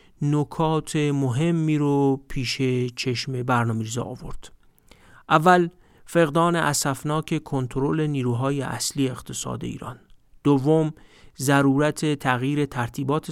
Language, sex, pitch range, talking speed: Persian, male, 125-155 Hz, 85 wpm